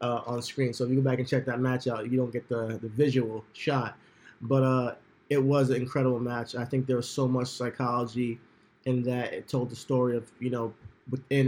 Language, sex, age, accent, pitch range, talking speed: English, male, 20-39, American, 115-135 Hz, 230 wpm